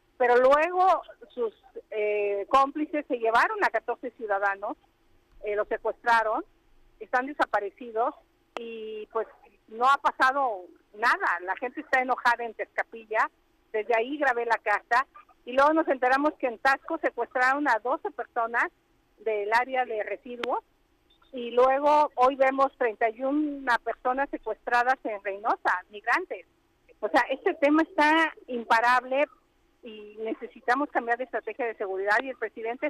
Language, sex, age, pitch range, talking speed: Spanish, female, 50-69, 220-295 Hz, 135 wpm